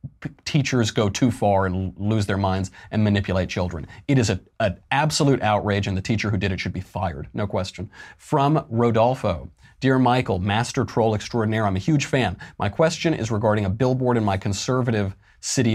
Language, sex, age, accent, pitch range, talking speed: English, male, 30-49, American, 100-130 Hz, 185 wpm